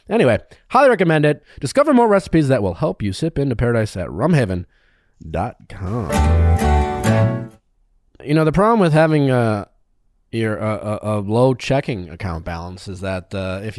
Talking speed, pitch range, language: 145 wpm, 95-150 Hz, English